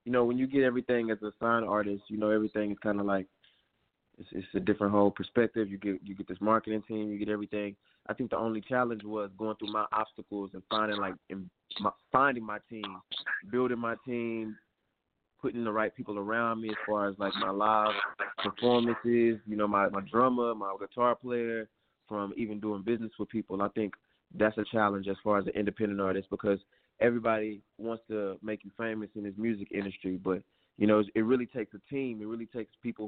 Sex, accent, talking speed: male, American, 210 wpm